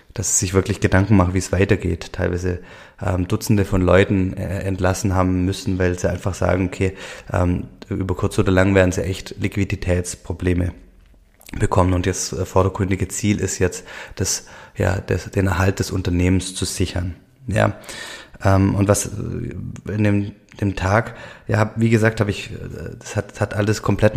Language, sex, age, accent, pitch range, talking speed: German, male, 20-39, German, 95-105 Hz, 165 wpm